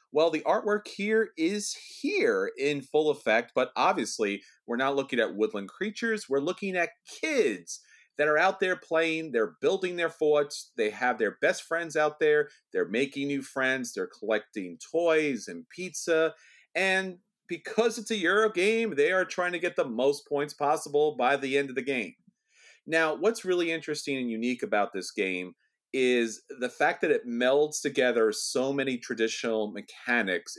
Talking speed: 170 wpm